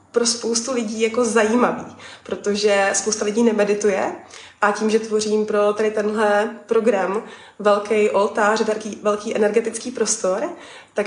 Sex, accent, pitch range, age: female, native, 200-225 Hz, 20-39